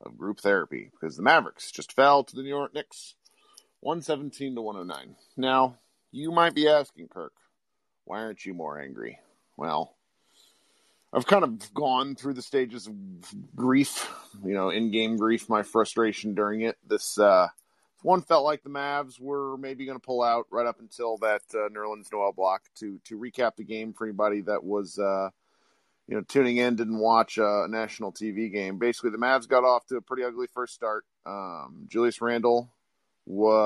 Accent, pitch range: American, 105-130 Hz